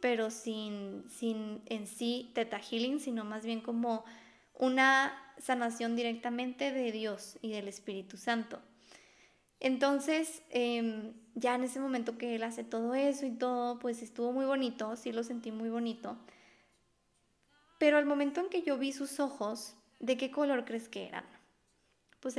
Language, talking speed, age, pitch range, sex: Spanish, 155 wpm, 20-39, 225-260 Hz, female